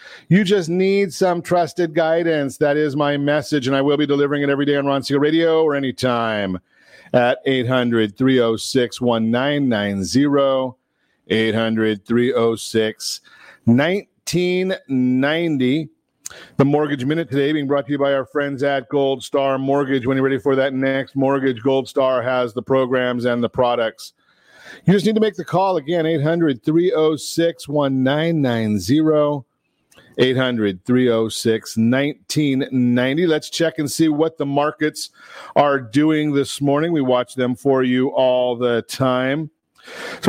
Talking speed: 130 wpm